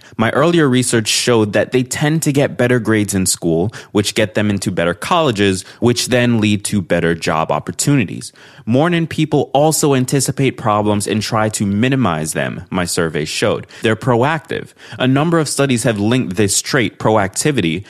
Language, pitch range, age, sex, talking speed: English, 95-130 Hz, 20-39, male, 170 wpm